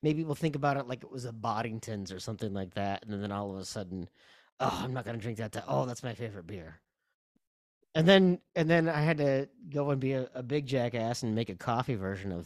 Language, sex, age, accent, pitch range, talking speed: English, male, 30-49, American, 90-130 Hz, 250 wpm